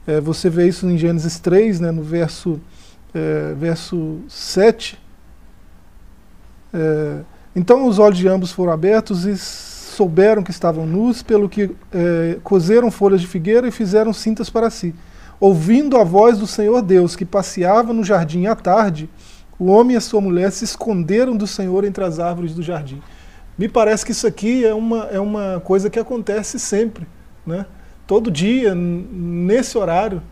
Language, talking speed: Portuguese, 165 wpm